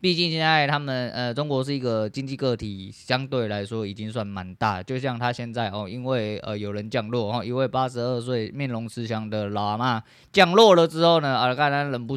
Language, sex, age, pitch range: Chinese, male, 20-39, 110-130 Hz